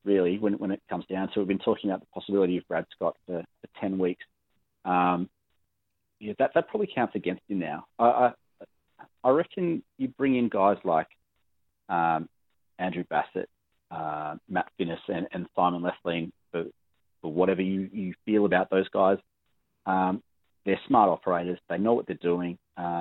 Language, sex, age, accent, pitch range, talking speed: English, male, 30-49, Australian, 85-95 Hz, 170 wpm